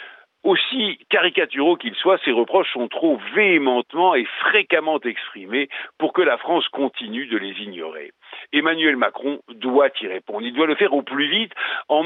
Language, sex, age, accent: French, male, 50-69, French